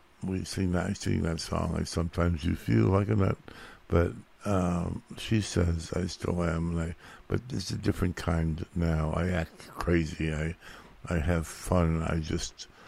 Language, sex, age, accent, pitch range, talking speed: English, male, 60-79, American, 80-95 Hz, 175 wpm